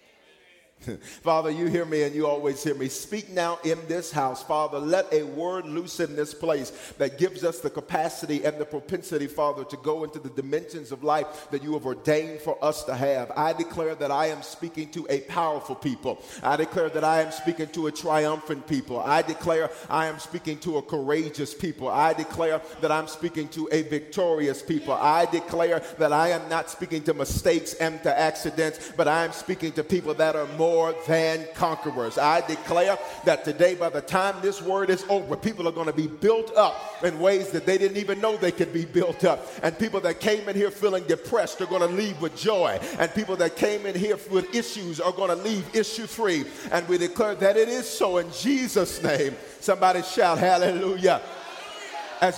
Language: English